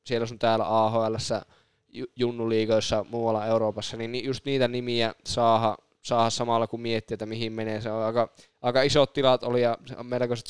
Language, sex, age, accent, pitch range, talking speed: Finnish, male, 20-39, native, 115-130 Hz, 160 wpm